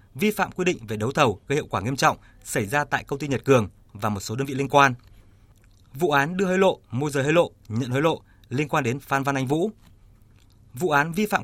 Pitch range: 110-150 Hz